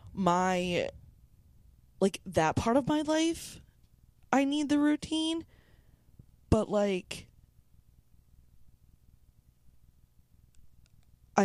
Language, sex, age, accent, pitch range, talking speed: English, female, 20-39, American, 130-185 Hz, 70 wpm